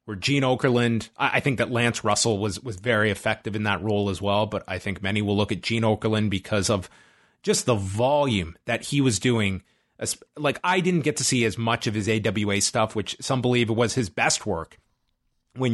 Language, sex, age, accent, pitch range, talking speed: English, male, 30-49, American, 105-135 Hz, 210 wpm